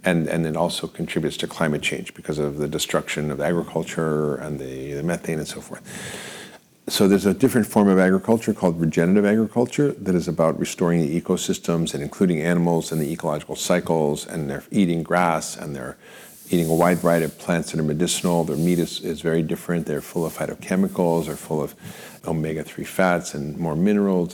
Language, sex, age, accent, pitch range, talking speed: English, male, 50-69, American, 80-95 Hz, 190 wpm